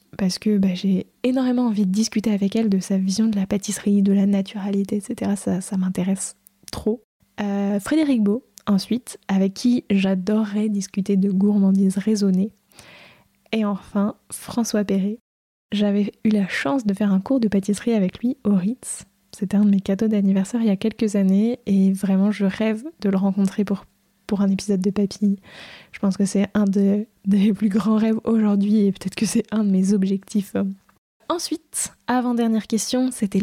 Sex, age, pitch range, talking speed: female, 20-39, 200-225 Hz, 180 wpm